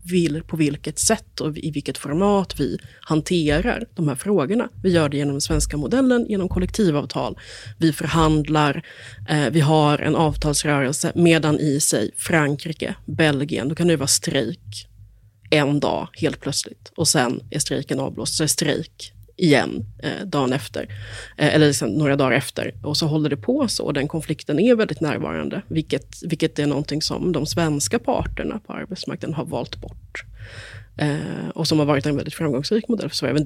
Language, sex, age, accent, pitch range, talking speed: Swedish, female, 30-49, native, 140-165 Hz, 170 wpm